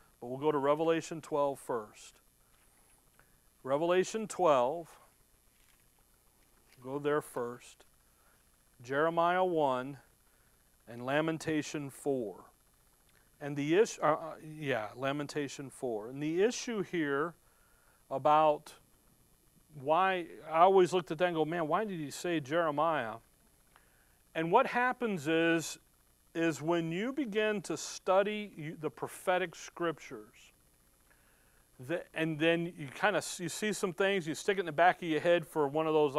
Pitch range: 140-185 Hz